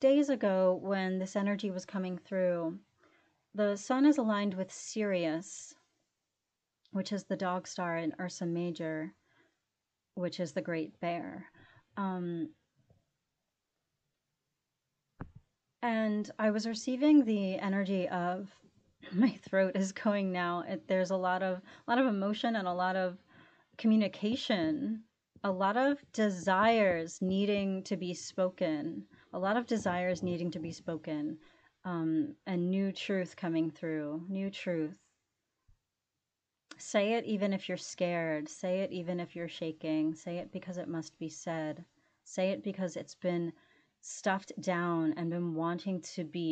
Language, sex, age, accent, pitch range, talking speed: English, female, 30-49, American, 170-200 Hz, 140 wpm